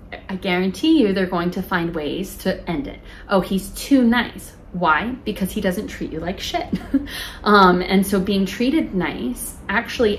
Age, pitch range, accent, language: 20-39, 170-205 Hz, American, English